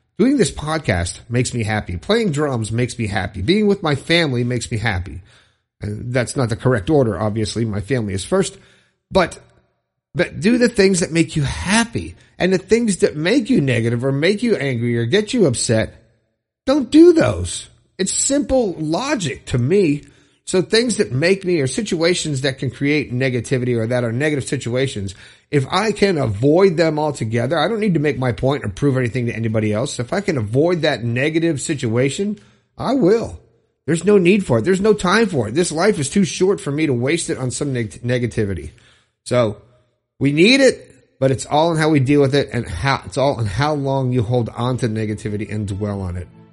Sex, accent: male, American